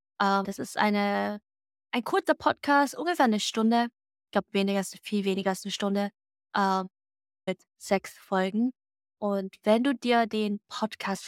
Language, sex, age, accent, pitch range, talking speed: German, female, 20-39, German, 195-235 Hz, 155 wpm